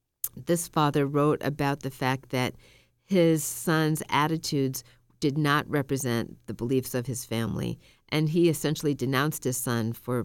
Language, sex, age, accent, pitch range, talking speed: English, female, 50-69, American, 130-160 Hz, 145 wpm